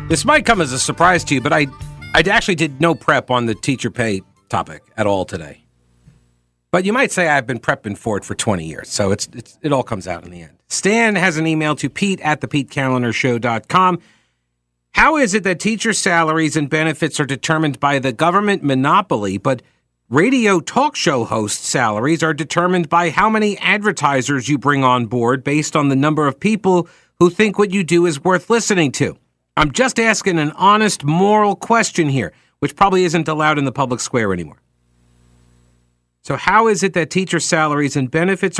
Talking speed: 195 wpm